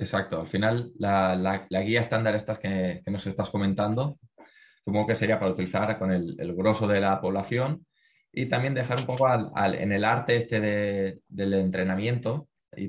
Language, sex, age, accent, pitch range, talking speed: Spanish, male, 20-39, Spanish, 100-115 Hz, 195 wpm